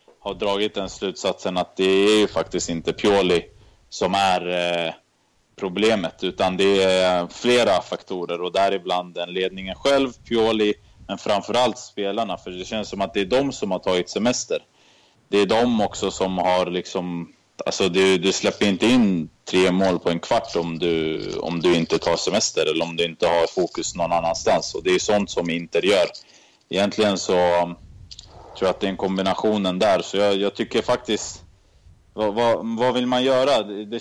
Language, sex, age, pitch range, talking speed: Swedish, male, 20-39, 90-105 Hz, 185 wpm